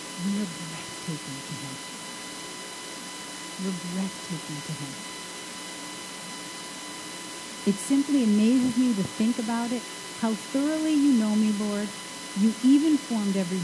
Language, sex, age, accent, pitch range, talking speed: English, female, 50-69, American, 165-210 Hz, 115 wpm